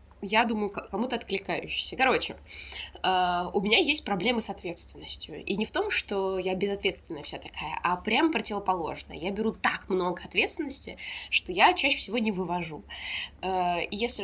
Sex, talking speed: female, 150 wpm